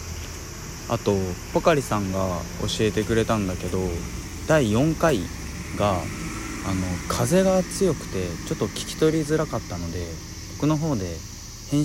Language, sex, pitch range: Japanese, male, 90-115 Hz